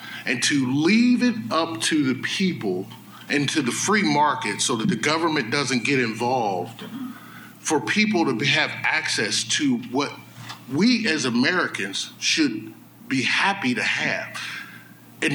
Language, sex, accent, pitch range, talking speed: English, male, American, 145-220 Hz, 140 wpm